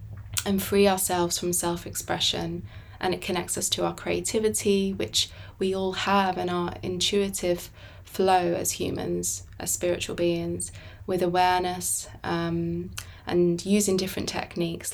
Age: 20-39